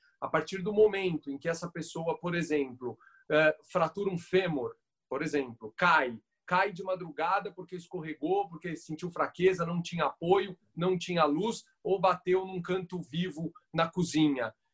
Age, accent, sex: 40-59, Brazilian, male